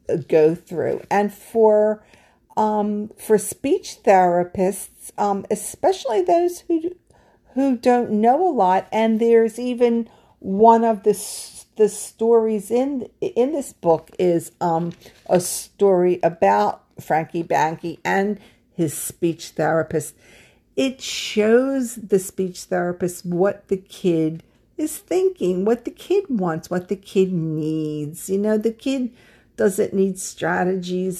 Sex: female